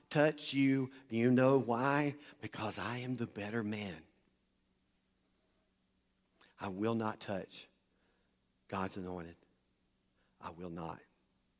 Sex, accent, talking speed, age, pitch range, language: male, American, 110 wpm, 50-69, 105-140 Hz, English